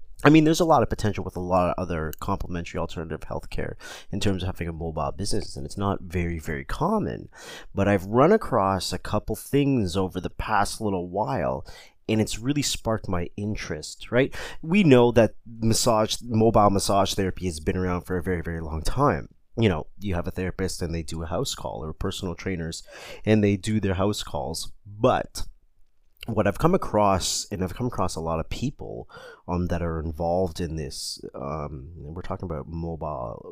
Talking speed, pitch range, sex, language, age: 195 wpm, 80-100 Hz, male, English, 30-49